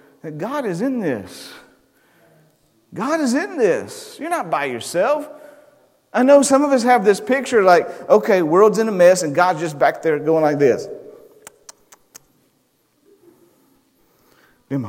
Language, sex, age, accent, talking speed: English, male, 50-69, American, 145 wpm